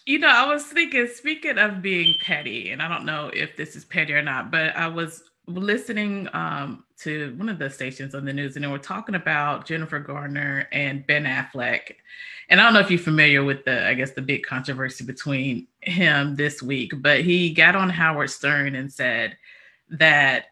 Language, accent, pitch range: English, American, 140-180 Hz